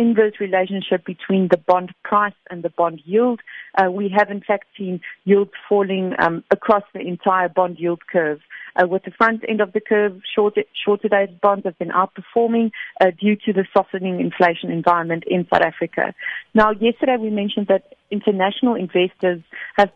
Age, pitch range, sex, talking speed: 40-59, 180-210 Hz, female, 170 wpm